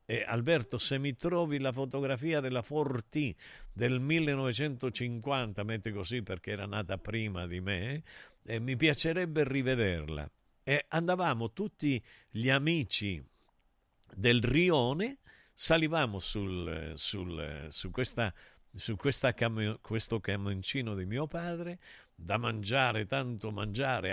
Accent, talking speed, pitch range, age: native, 100 wpm, 100-145 Hz, 50-69